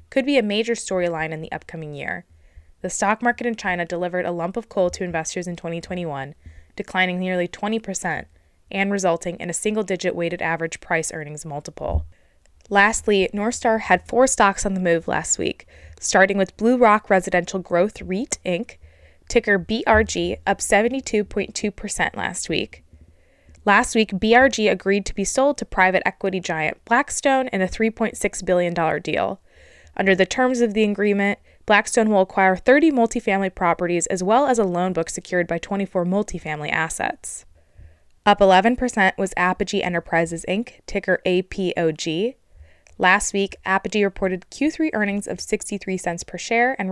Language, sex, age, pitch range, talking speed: English, female, 20-39, 170-210 Hz, 155 wpm